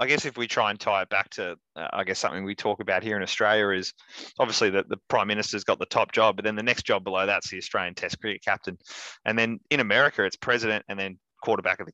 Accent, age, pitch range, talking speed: Australian, 20-39, 95-110 Hz, 265 wpm